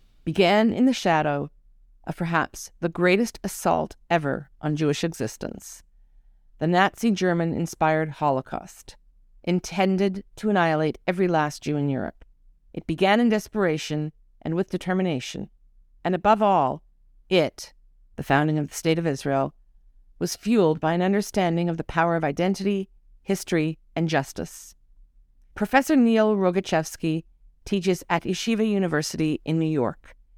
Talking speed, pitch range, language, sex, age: 130 wpm, 150-195 Hz, English, female, 50-69